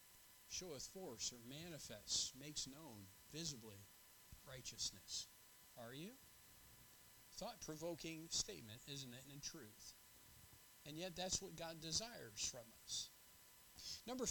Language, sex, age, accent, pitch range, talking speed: English, male, 50-69, American, 125-195 Hz, 105 wpm